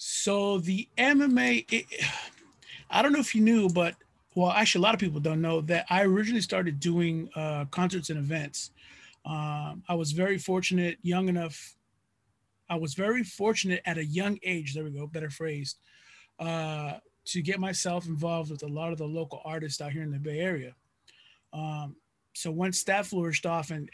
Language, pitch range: English, 155-180 Hz